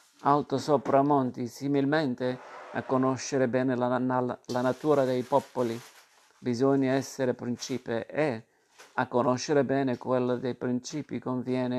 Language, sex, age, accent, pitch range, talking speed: Italian, male, 50-69, native, 120-130 Hz, 120 wpm